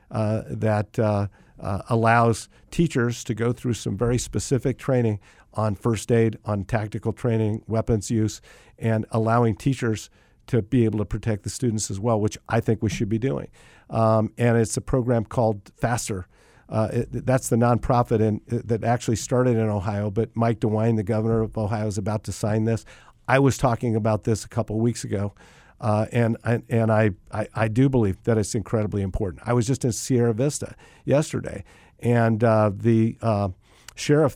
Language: English